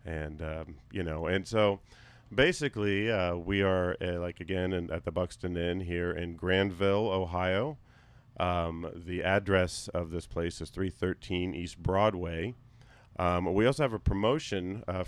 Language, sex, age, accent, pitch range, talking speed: English, male, 40-59, American, 85-100 Hz, 150 wpm